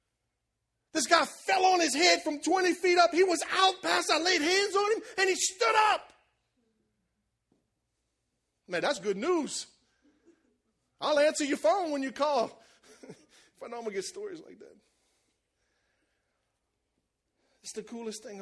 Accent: American